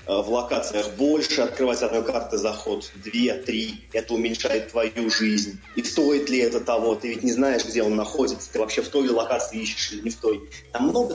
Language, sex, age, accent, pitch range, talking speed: Russian, male, 20-39, native, 110-135 Hz, 200 wpm